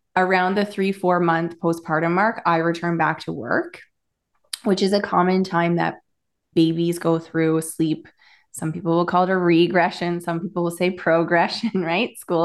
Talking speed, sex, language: 175 wpm, female, English